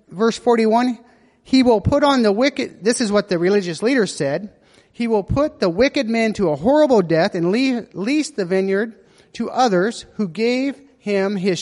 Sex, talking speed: male, 185 wpm